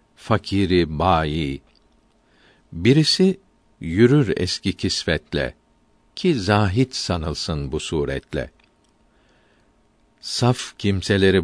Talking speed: 70 wpm